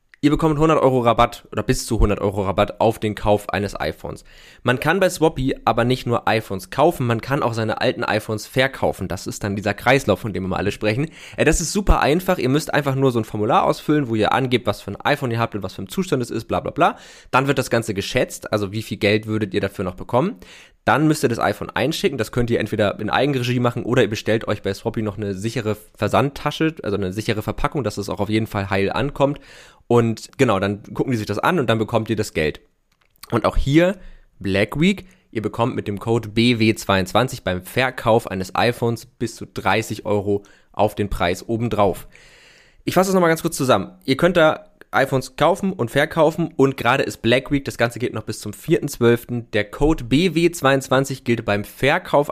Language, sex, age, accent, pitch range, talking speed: German, male, 20-39, German, 105-135 Hz, 220 wpm